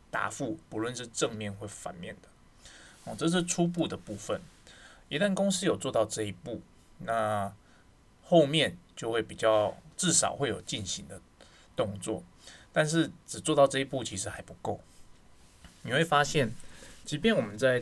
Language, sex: Chinese, male